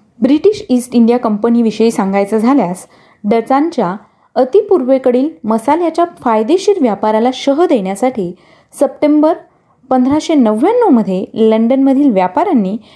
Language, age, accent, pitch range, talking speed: Marathi, 30-49, native, 215-275 Hz, 85 wpm